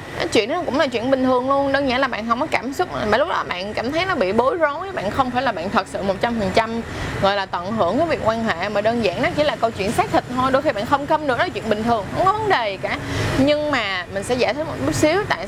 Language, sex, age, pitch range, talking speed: Vietnamese, female, 20-39, 205-285 Hz, 315 wpm